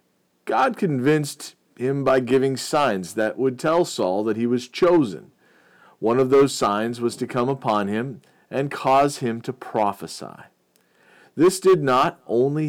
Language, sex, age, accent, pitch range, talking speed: English, male, 40-59, American, 110-145 Hz, 150 wpm